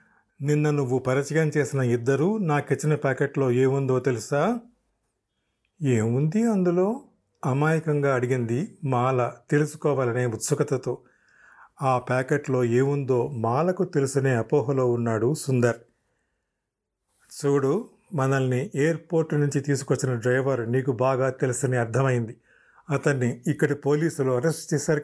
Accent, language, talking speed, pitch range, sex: native, Telugu, 95 wpm, 130-160 Hz, male